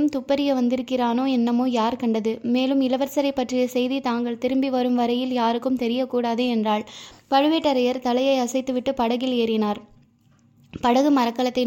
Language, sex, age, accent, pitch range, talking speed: Tamil, female, 20-39, native, 235-265 Hz, 120 wpm